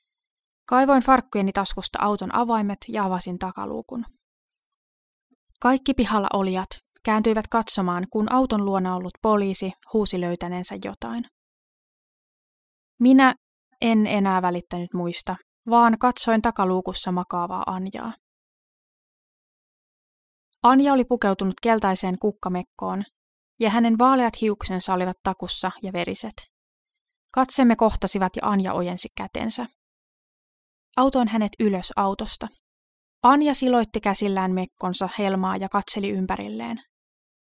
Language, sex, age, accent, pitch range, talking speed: Finnish, female, 20-39, native, 190-240 Hz, 100 wpm